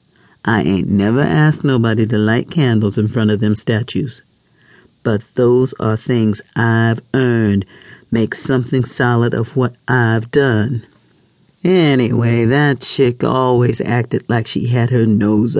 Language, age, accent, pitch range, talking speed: English, 40-59, American, 105-130 Hz, 140 wpm